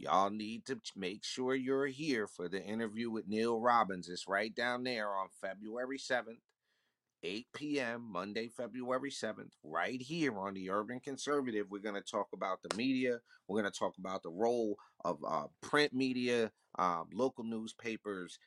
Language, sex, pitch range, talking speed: English, male, 100-120 Hz, 170 wpm